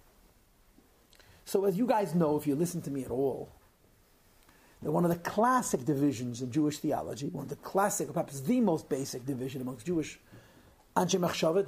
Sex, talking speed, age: male, 175 wpm, 50-69